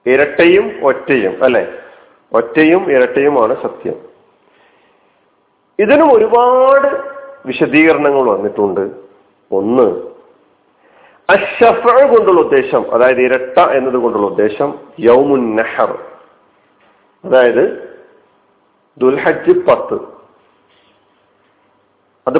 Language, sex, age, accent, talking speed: Malayalam, male, 50-69, native, 65 wpm